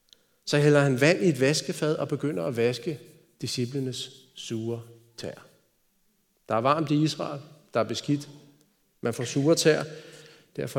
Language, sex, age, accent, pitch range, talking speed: Danish, male, 40-59, native, 125-180 Hz, 150 wpm